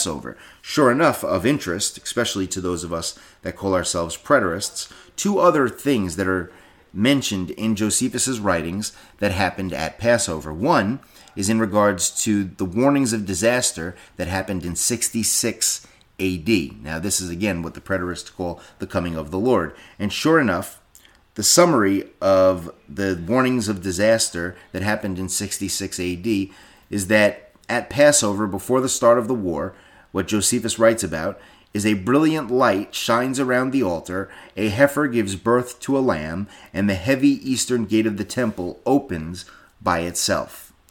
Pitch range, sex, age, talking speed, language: 90-115 Hz, male, 30-49, 160 wpm, English